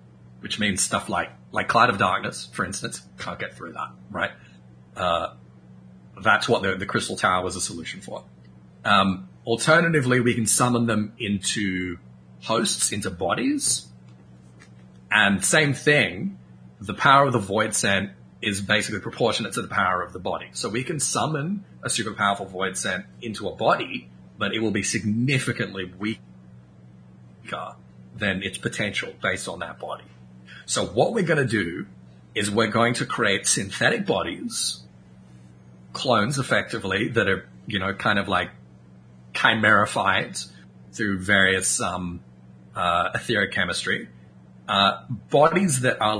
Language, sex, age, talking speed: English, male, 30-49, 145 wpm